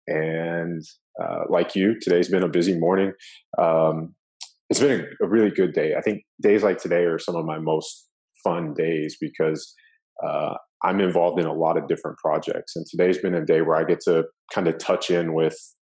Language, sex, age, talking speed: English, male, 30-49, 195 wpm